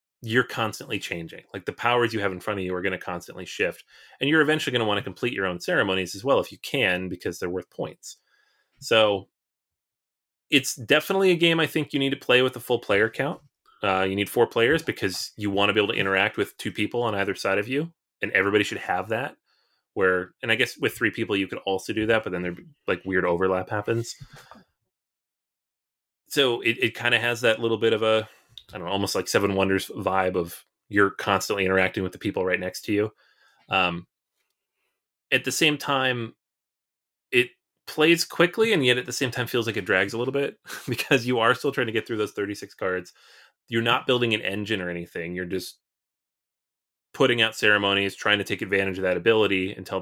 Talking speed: 215 wpm